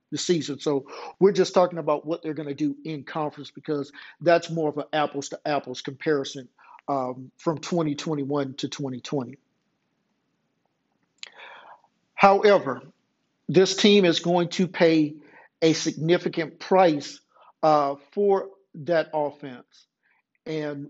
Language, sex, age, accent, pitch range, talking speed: English, male, 50-69, American, 145-175 Hz, 125 wpm